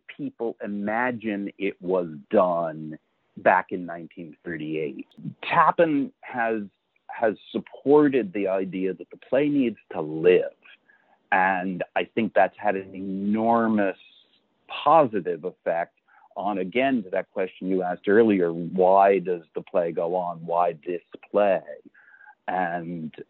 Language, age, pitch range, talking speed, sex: English, 50-69, 85-105 Hz, 125 wpm, male